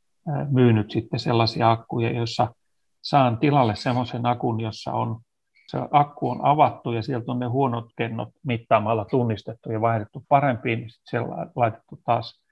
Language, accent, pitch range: Finnish, native, 115-130 Hz